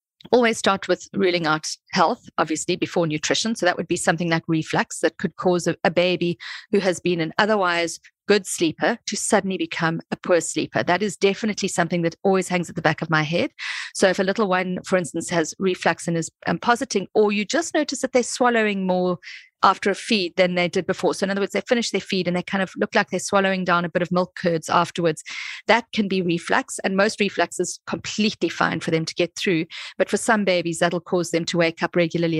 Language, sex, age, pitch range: English, female, 40-59, 170-205 Hz